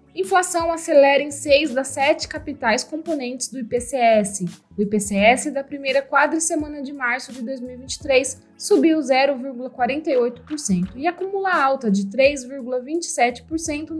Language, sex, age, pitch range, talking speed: Portuguese, female, 20-39, 230-300 Hz, 110 wpm